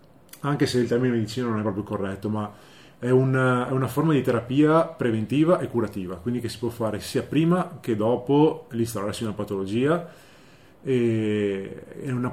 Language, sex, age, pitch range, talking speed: Italian, male, 20-39, 105-130 Hz, 170 wpm